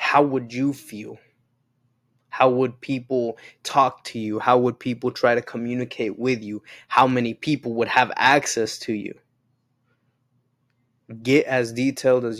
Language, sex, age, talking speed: English, male, 20-39, 145 wpm